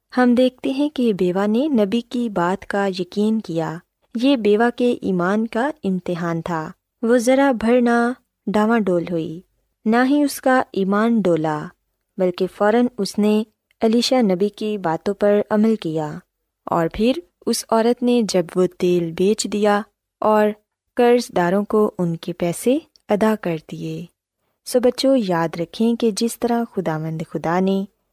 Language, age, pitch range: Urdu, 20-39, 180-240 Hz